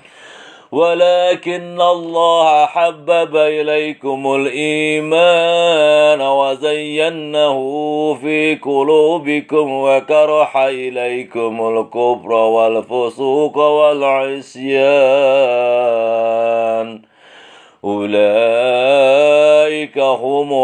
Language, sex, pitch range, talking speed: English, male, 120-150 Hz, 45 wpm